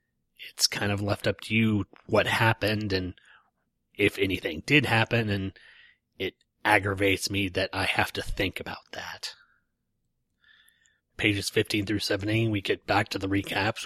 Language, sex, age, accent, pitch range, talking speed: English, male, 30-49, American, 100-115 Hz, 150 wpm